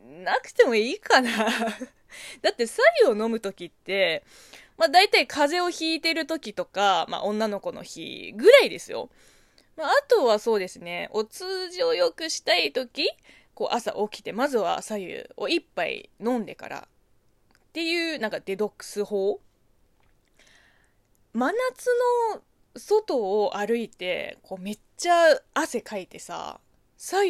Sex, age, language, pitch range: female, 20-39, Japanese, 205-345 Hz